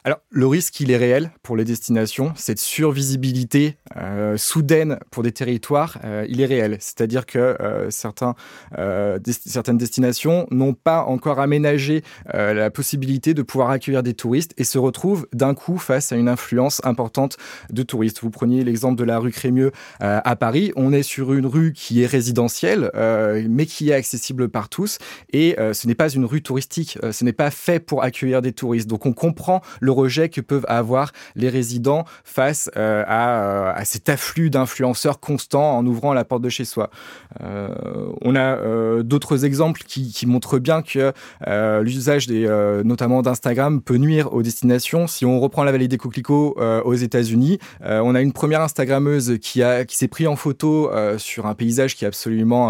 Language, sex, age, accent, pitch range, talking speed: French, male, 20-39, French, 115-145 Hz, 195 wpm